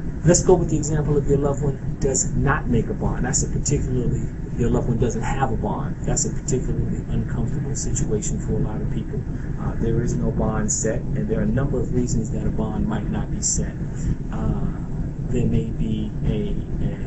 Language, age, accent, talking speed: English, 30-49, American, 215 wpm